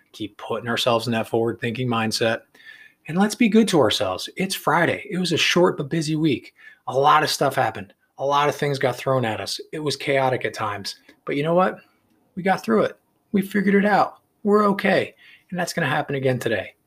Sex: male